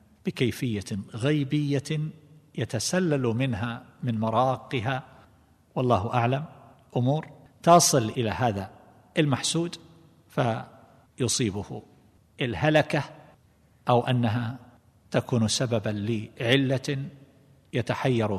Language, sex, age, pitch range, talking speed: Arabic, male, 50-69, 110-140 Hz, 70 wpm